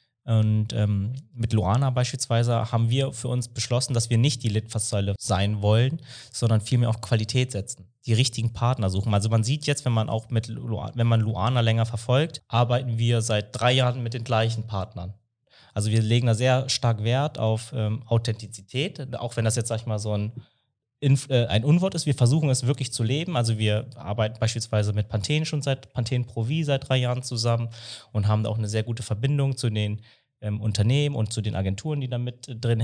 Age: 20-39